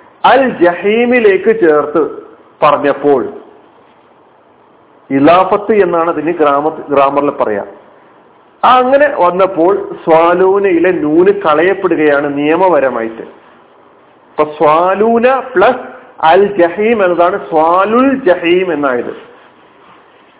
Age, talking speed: 40-59, 70 wpm